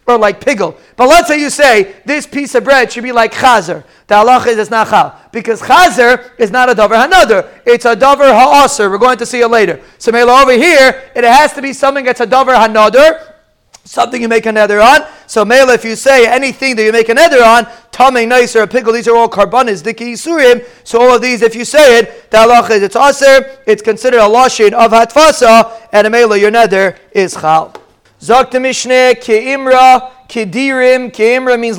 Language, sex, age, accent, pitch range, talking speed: English, male, 40-59, American, 215-255 Hz, 210 wpm